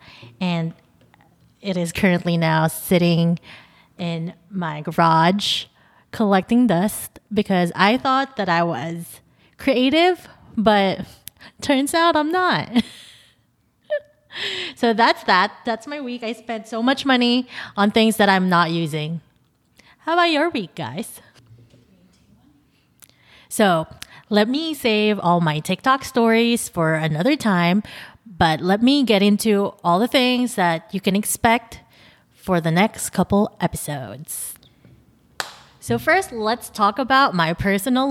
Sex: female